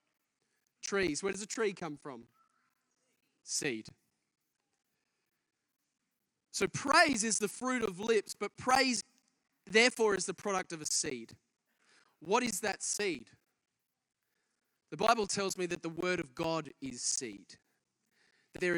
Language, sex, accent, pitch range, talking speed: English, male, Australian, 175-220 Hz, 130 wpm